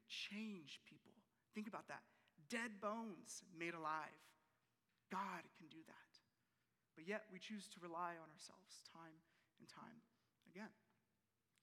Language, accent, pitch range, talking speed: English, American, 175-220 Hz, 130 wpm